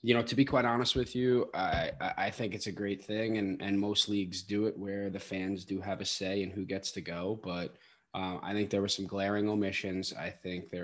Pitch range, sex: 95-105 Hz, male